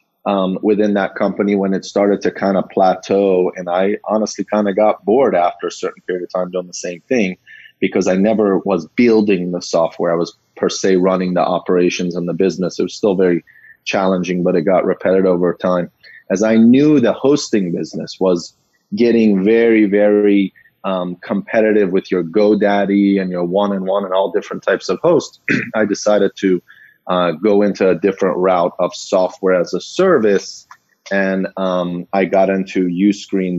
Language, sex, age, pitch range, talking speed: English, male, 30-49, 90-100 Hz, 180 wpm